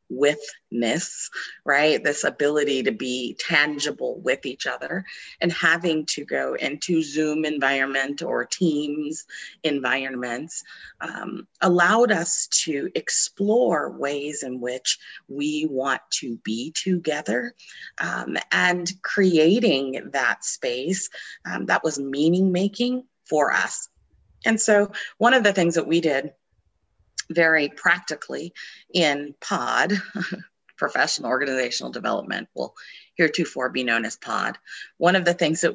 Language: English